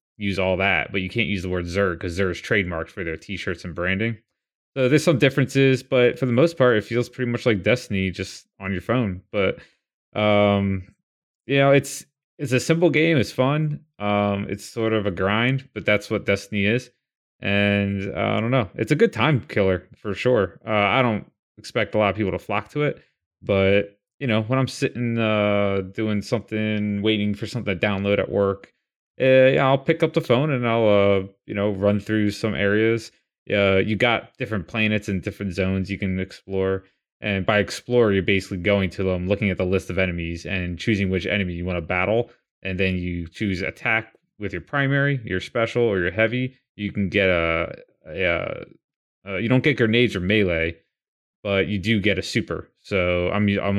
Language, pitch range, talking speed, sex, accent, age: English, 95-120 Hz, 205 wpm, male, American, 20-39